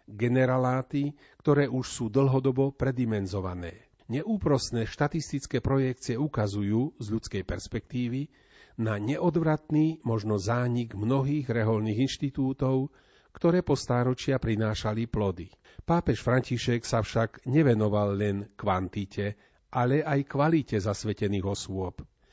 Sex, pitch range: male, 110-145 Hz